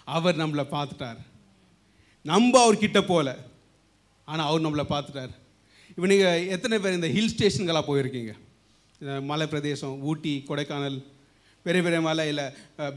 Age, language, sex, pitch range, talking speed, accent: 30-49, Tamil, male, 140-200 Hz, 120 wpm, native